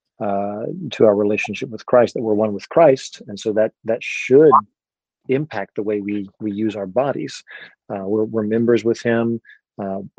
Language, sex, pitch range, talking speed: English, male, 105-120 Hz, 185 wpm